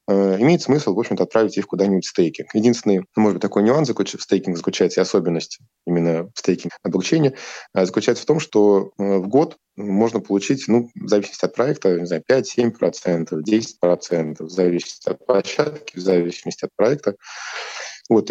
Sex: male